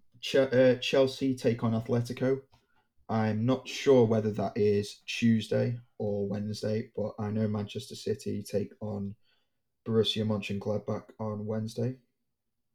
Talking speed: 115 wpm